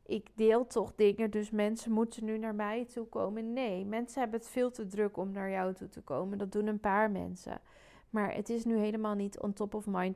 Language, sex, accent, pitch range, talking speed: Dutch, female, Dutch, 200-235 Hz, 235 wpm